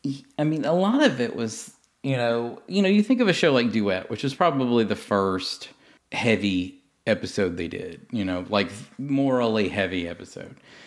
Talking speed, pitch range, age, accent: 180 wpm, 95-120 Hz, 40-59, American